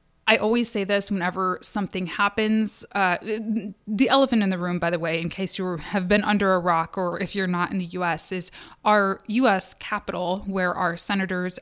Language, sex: English, female